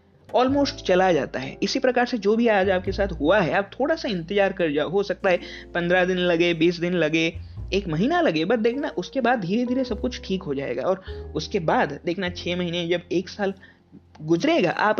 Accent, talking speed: native, 215 wpm